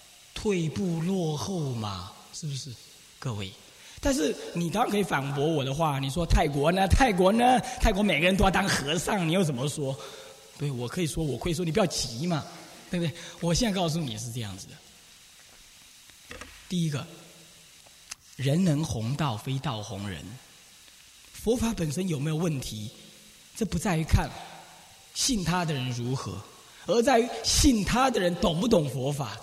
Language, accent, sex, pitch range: Chinese, native, male, 135-190 Hz